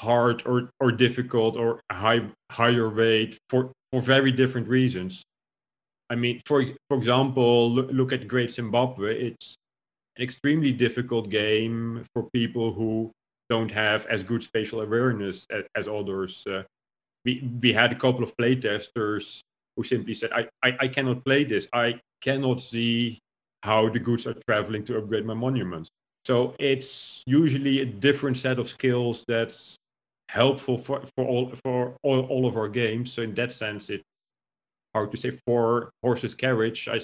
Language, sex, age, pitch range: English, male, 40-59, 110-125 Hz